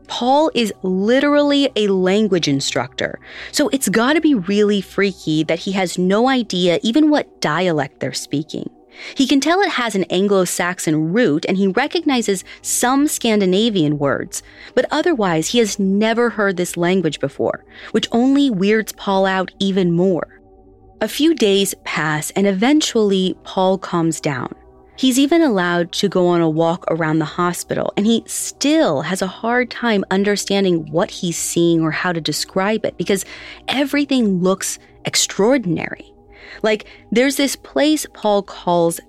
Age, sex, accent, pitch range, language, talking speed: 30-49, female, American, 170-260 Hz, English, 150 wpm